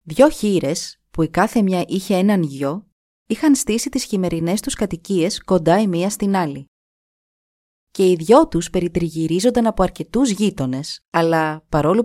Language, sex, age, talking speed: Greek, female, 30-49, 150 wpm